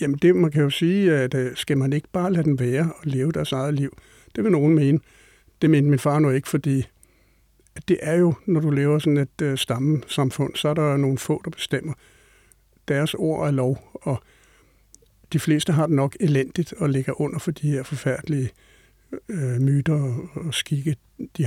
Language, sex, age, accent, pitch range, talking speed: Danish, male, 60-79, native, 135-160 Hz, 205 wpm